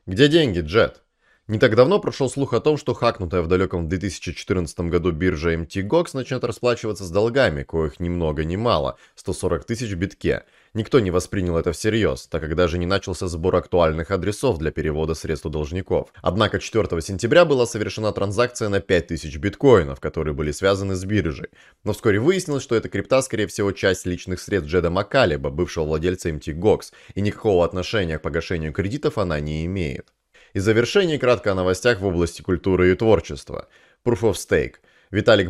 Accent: native